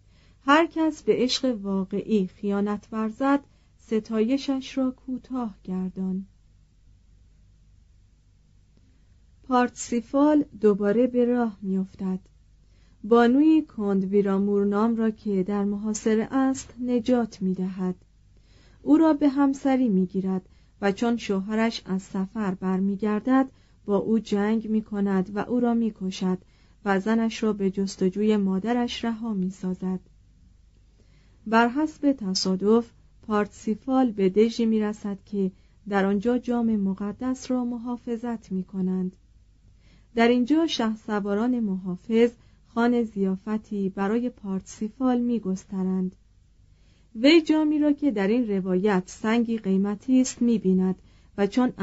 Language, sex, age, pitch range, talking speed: Persian, female, 40-59, 190-235 Hz, 105 wpm